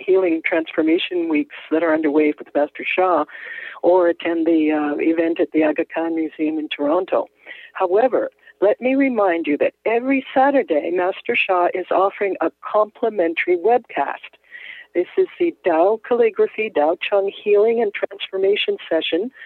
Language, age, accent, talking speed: English, 60-79, American, 150 wpm